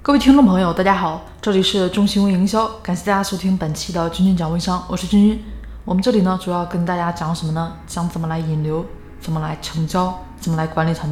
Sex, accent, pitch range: female, native, 160-195 Hz